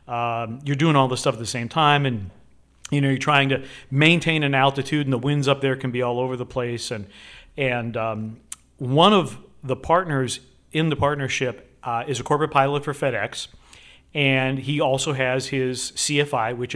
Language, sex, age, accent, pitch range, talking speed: English, male, 40-59, American, 125-145 Hz, 195 wpm